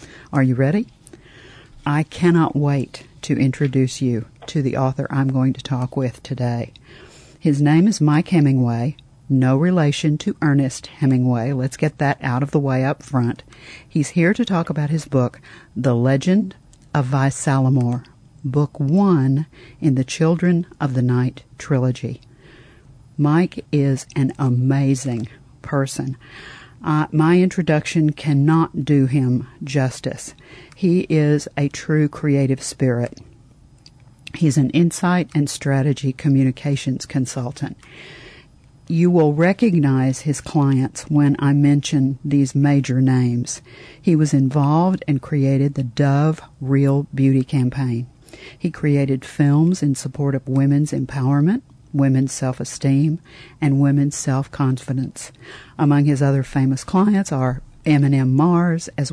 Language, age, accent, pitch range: English, 50-69, American, 130-150 Hz